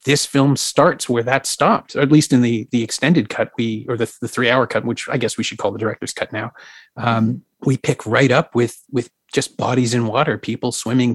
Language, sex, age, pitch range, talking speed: English, male, 30-49, 115-130 Hz, 235 wpm